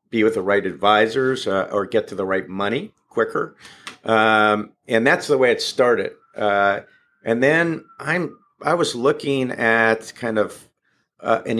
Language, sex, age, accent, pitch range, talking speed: English, male, 50-69, American, 105-130 Hz, 165 wpm